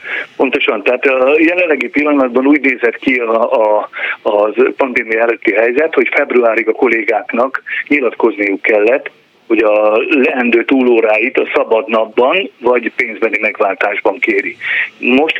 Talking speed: 115 wpm